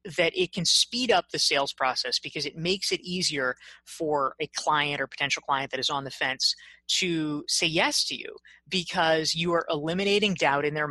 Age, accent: 20-39, American